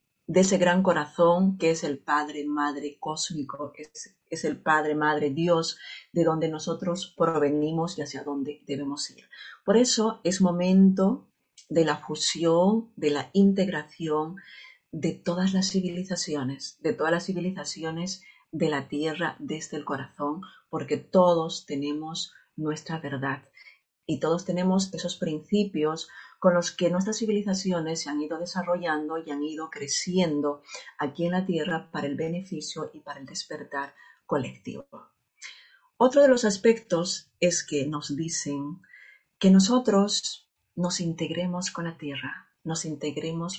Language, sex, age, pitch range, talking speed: Spanish, female, 40-59, 150-185 Hz, 135 wpm